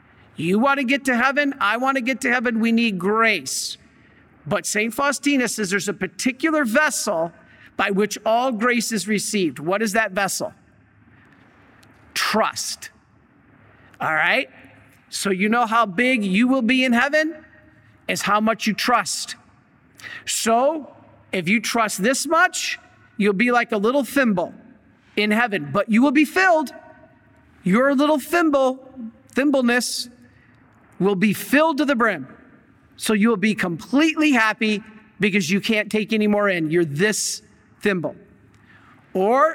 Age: 50-69